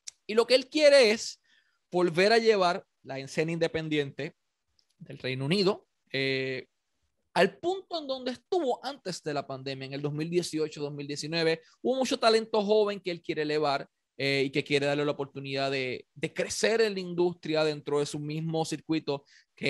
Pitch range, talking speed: 140-195 Hz, 170 wpm